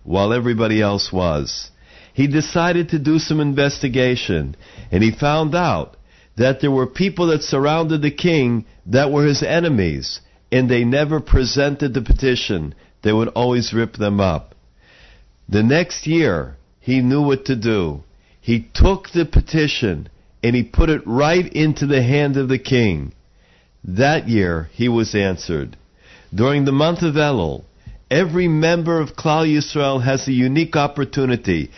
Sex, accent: male, American